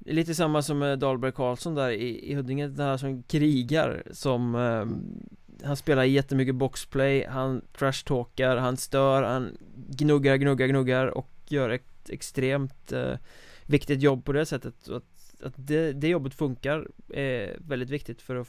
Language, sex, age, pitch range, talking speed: Swedish, male, 20-39, 125-145 Hz, 170 wpm